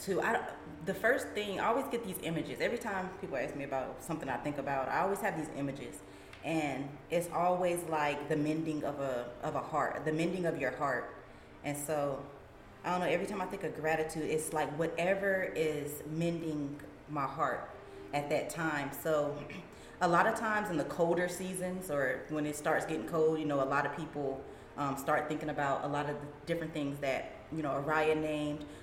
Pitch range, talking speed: 145-165 Hz, 205 wpm